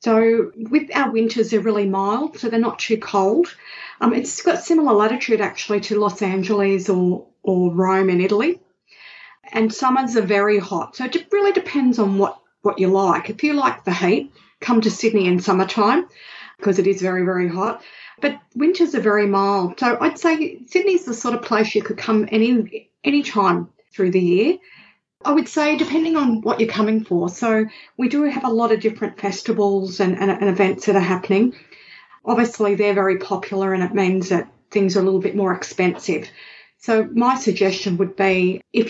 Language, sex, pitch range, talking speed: English, female, 195-235 Hz, 190 wpm